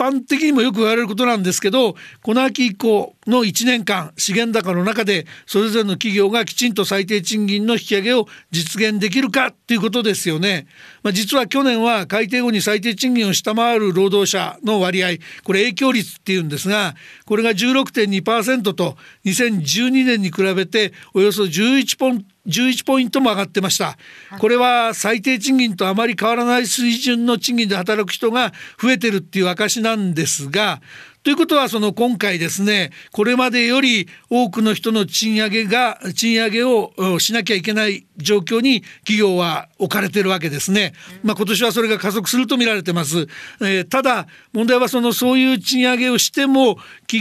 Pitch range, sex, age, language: 195-240 Hz, male, 50-69, Japanese